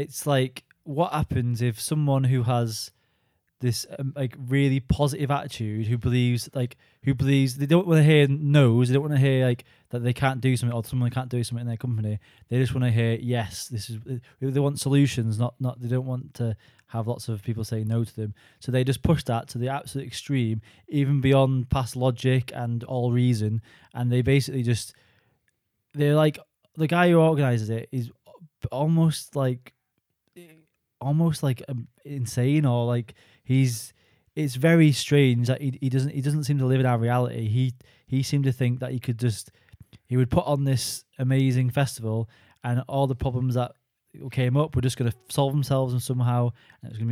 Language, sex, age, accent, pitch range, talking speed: English, male, 20-39, British, 115-140 Hz, 195 wpm